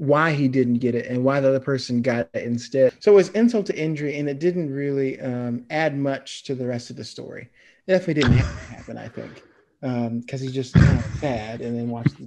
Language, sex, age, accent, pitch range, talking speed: English, male, 30-49, American, 120-145 Hz, 230 wpm